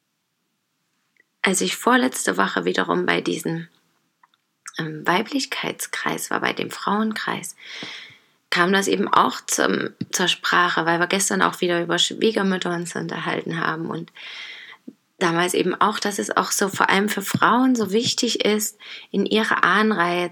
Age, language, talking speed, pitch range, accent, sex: 30-49, German, 140 wpm, 175-220 Hz, German, female